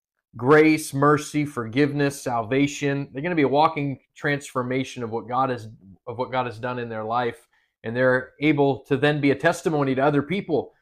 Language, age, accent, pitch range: English, 30-49, American, 135-155 Hz